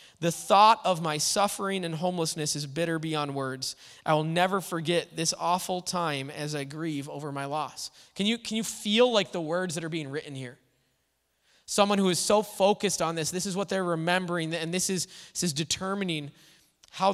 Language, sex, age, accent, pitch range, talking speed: English, male, 20-39, American, 155-200 Hz, 195 wpm